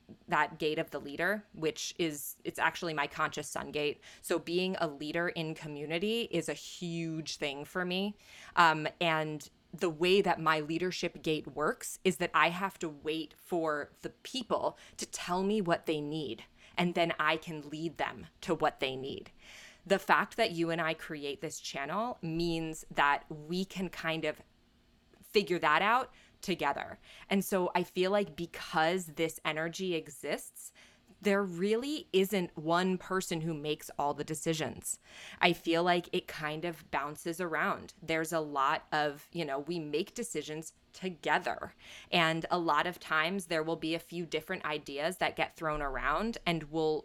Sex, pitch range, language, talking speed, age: female, 155-180 Hz, English, 170 wpm, 20-39